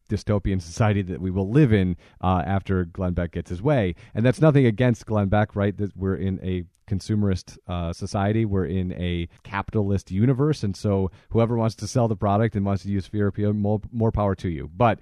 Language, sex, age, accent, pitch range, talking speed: English, male, 40-59, American, 95-120 Hz, 210 wpm